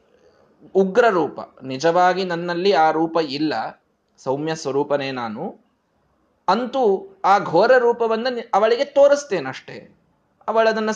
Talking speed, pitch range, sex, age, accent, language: 95 wpm, 135-190 Hz, male, 20-39, native, Kannada